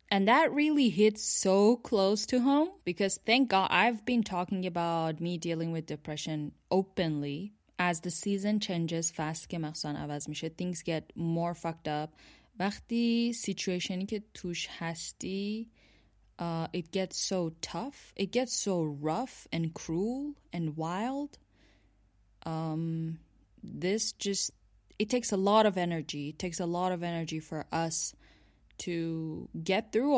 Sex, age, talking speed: female, 10-29, 125 wpm